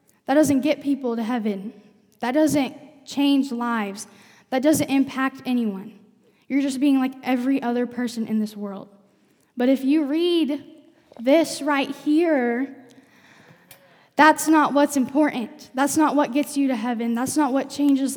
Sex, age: female, 10-29